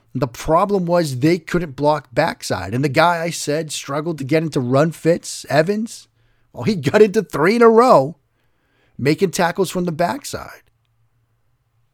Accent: American